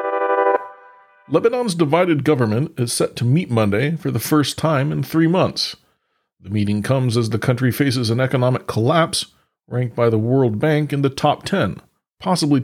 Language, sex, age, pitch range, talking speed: English, male, 40-59, 115-150 Hz, 165 wpm